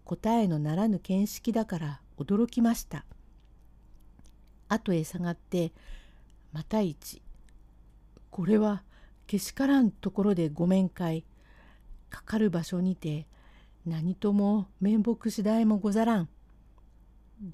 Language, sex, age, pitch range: Japanese, female, 50-69, 165-230 Hz